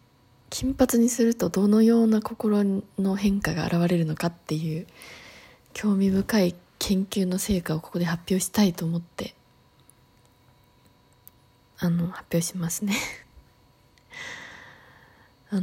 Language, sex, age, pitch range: Japanese, female, 20-39, 170-235 Hz